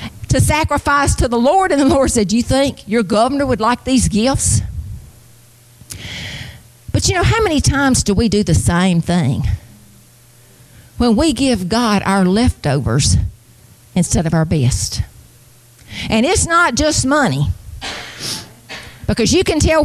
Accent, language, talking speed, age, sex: American, English, 145 wpm, 50-69, female